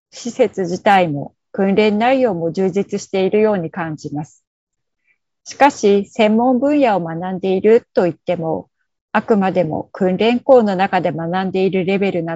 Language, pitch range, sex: Japanese, 180-225 Hz, female